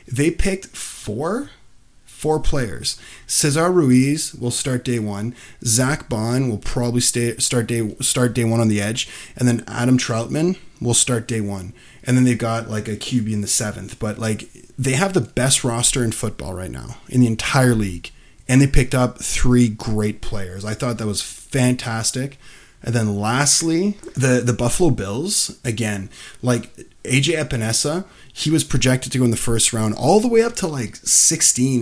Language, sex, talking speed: English, male, 180 wpm